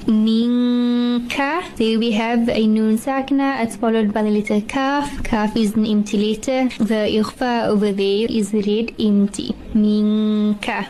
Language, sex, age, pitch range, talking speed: English, female, 20-39, 210-250 Hz, 145 wpm